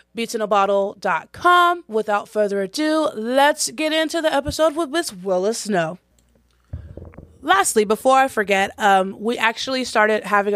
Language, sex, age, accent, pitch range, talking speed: English, female, 20-39, American, 195-230 Hz, 125 wpm